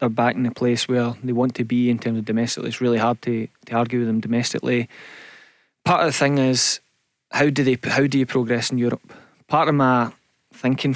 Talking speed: 225 wpm